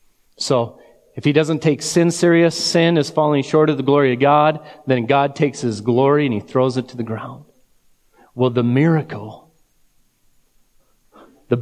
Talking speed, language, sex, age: 165 wpm, English, male, 40-59